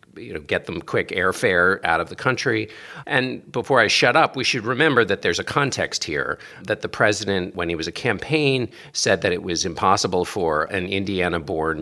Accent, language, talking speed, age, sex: American, English, 200 wpm, 50-69, male